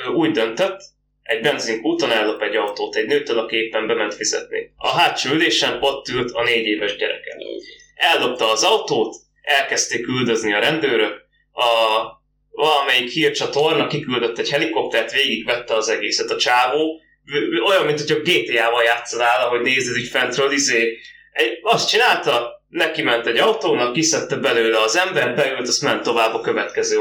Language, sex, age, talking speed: Hungarian, male, 20-39, 145 wpm